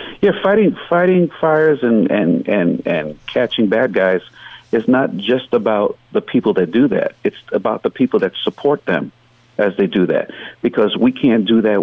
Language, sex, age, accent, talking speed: English, male, 50-69, American, 185 wpm